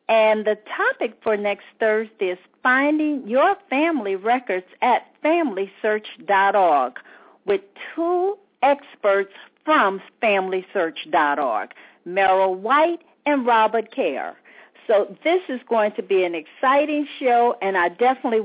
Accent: American